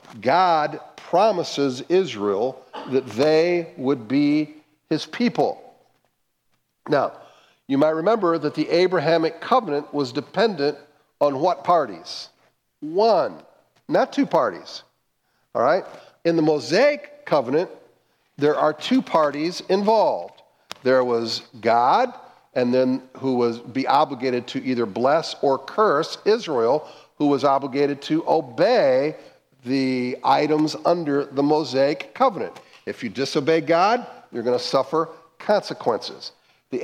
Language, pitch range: English, 140-185 Hz